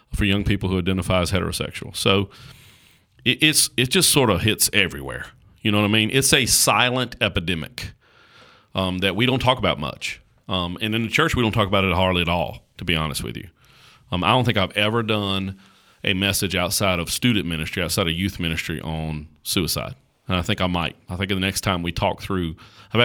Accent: American